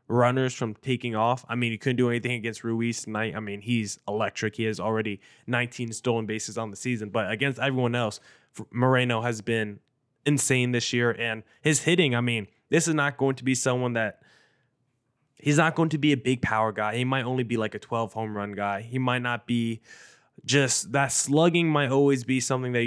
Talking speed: 210 wpm